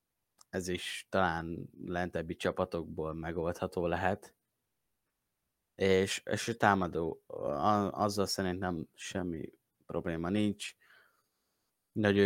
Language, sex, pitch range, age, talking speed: Hungarian, male, 95-105 Hz, 20-39, 85 wpm